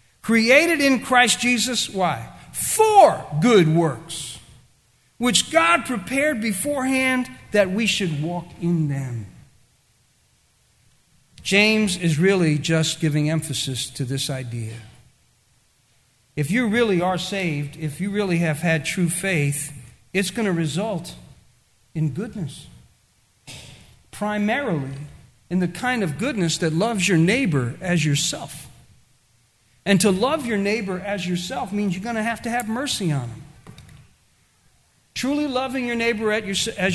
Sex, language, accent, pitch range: male, English, American, 140-205 Hz